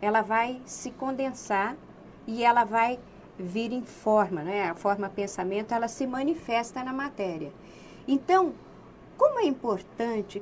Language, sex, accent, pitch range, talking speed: Portuguese, female, Brazilian, 190-260 Hz, 135 wpm